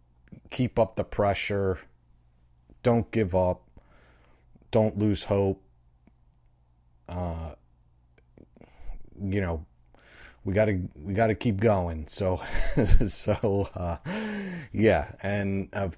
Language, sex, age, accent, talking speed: English, male, 30-49, American, 95 wpm